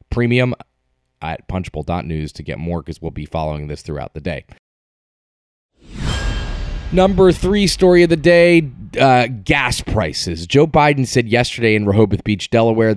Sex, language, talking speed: male, English, 145 wpm